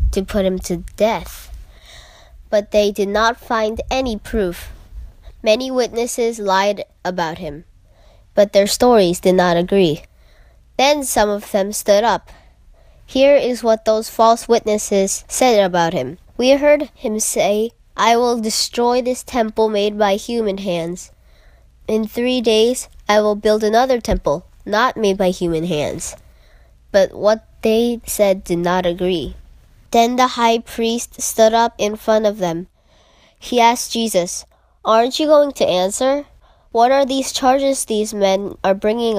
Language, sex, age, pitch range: Korean, female, 10-29, 190-235 Hz